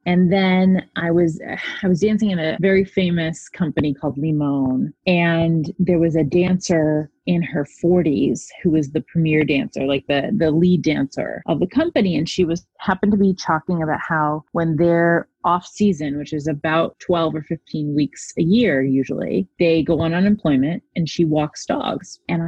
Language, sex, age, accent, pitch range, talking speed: English, female, 30-49, American, 155-195 Hz, 180 wpm